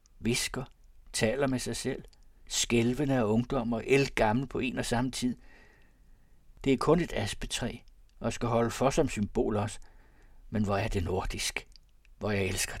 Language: Danish